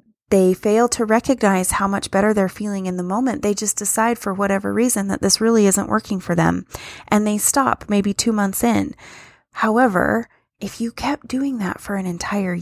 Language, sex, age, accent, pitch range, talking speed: English, female, 20-39, American, 180-220 Hz, 195 wpm